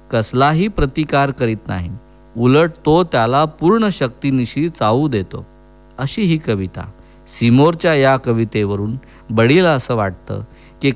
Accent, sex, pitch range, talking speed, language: Indian, male, 105-150 Hz, 115 wpm, English